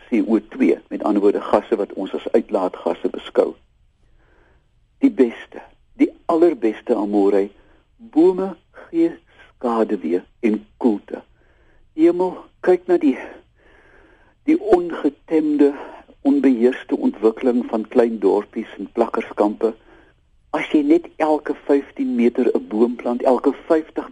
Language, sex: Dutch, male